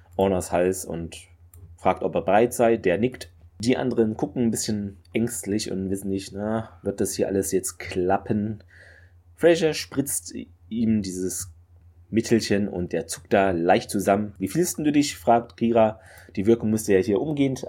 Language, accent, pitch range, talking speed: German, German, 90-115 Hz, 165 wpm